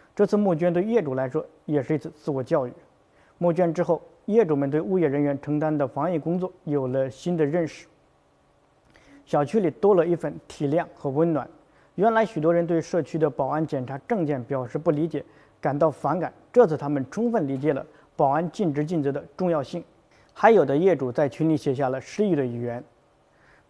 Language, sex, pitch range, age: Chinese, male, 145-175 Hz, 50-69